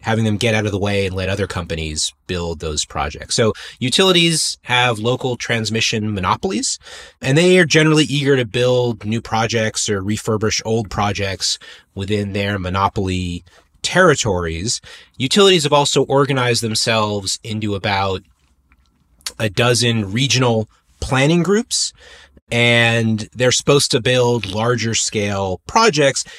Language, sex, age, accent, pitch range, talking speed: English, male, 30-49, American, 100-140 Hz, 130 wpm